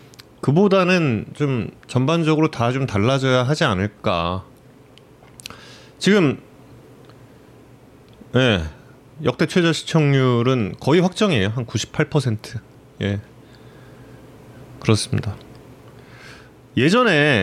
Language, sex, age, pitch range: Korean, male, 30-49, 115-165 Hz